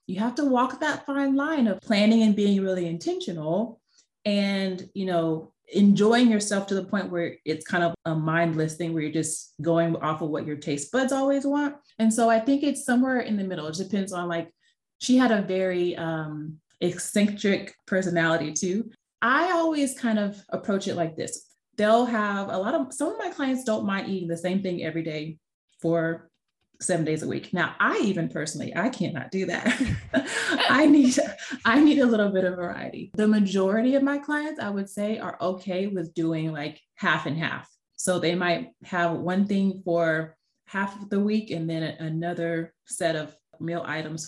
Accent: American